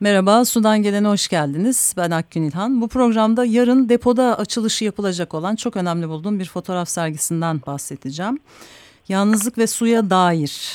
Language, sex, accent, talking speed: Turkish, female, native, 145 wpm